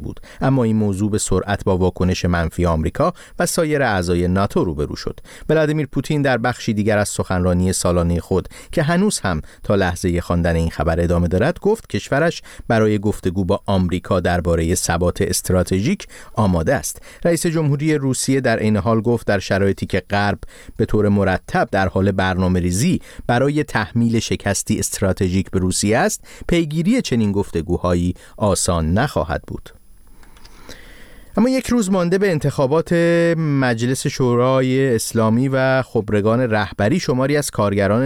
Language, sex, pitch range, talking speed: Persian, male, 95-135 Hz, 145 wpm